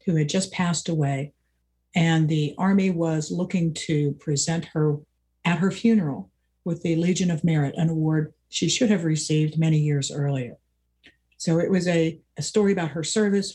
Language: English